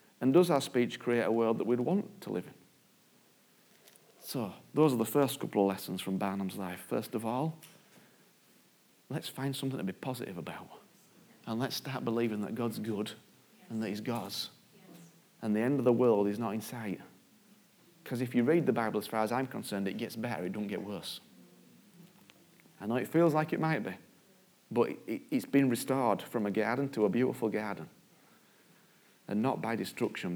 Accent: British